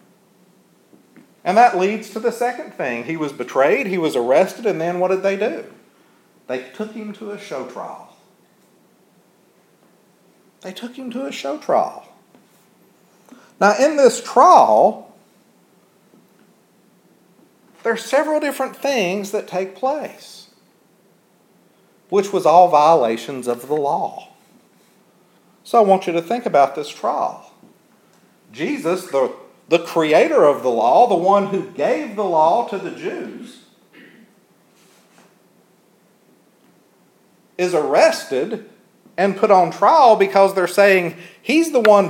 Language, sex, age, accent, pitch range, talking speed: English, male, 50-69, American, 180-230 Hz, 125 wpm